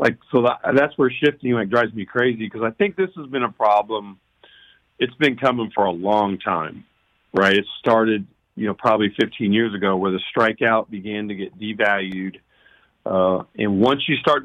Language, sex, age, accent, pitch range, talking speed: English, male, 50-69, American, 100-125 Hz, 185 wpm